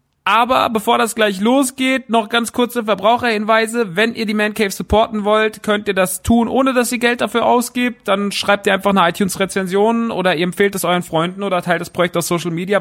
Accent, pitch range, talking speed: German, 170-220 Hz, 205 wpm